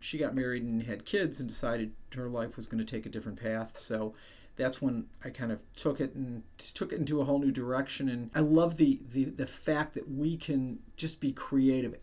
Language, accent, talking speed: English, American, 230 wpm